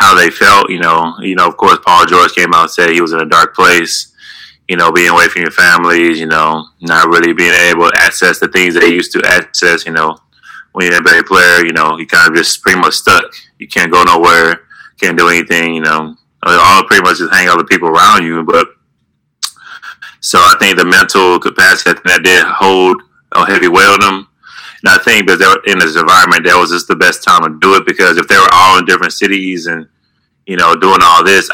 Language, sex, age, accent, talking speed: English, male, 20-39, American, 235 wpm